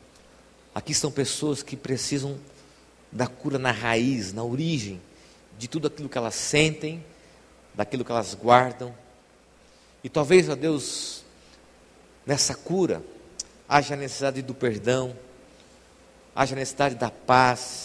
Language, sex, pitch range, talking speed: Portuguese, male, 110-140 Hz, 125 wpm